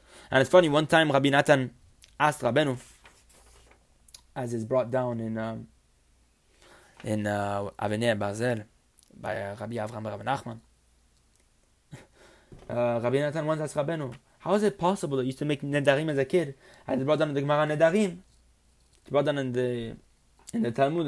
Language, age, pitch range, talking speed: English, 20-39, 110-140 Hz, 170 wpm